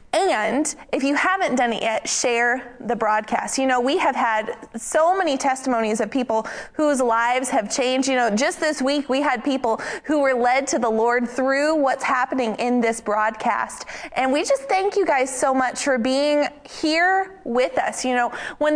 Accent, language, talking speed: American, English, 190 wpm